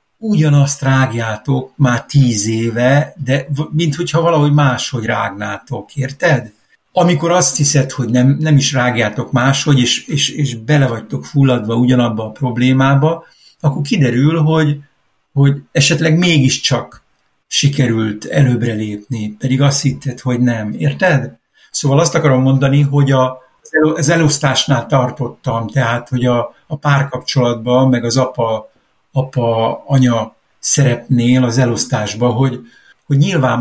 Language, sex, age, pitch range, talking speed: Hungarian, male, 60-79, 120-145 Hz, 120 wpm